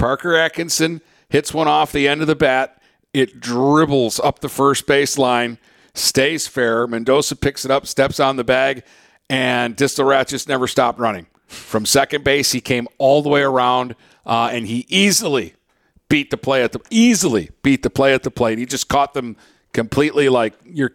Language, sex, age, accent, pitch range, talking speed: English, male, 50-69, American, 120-140 Hz, 185 wpm